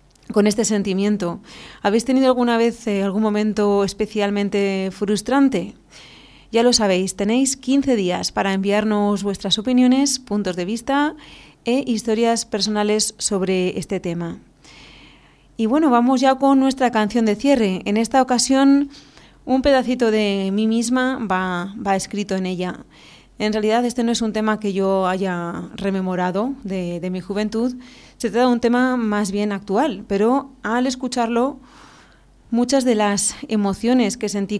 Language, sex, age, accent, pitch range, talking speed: Spanish, female, 30-49, Spanish, 195-240 Hz, 145 wpm